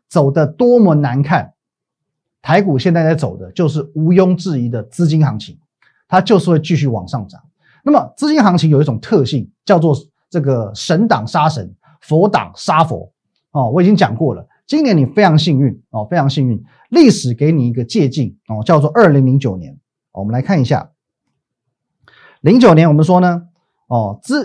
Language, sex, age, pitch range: Chinese, male, 30-49, 125-170 Hz